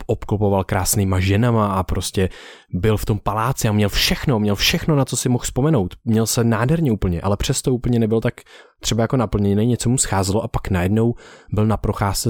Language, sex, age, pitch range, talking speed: Czech, male, 20-39, 95-115 Hz, 195 wpm